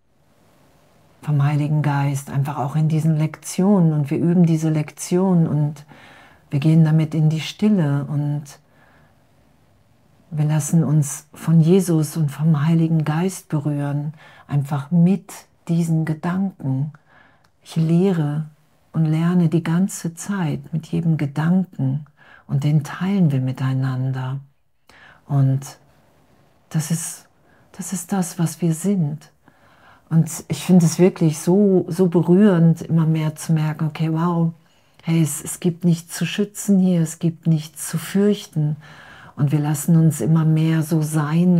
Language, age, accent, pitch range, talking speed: German, 50-69, German, 150-180 Hz, 135 wpm